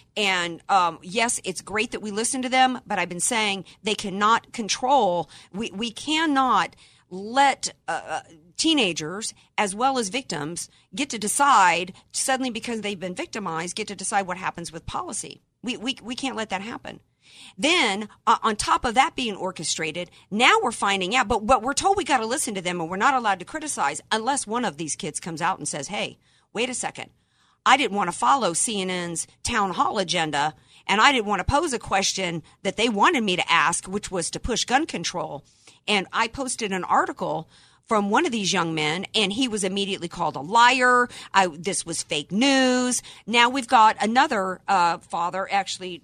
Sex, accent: female, American